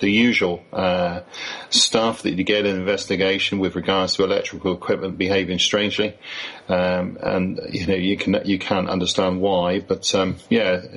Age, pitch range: 40-59, 90-100 Hz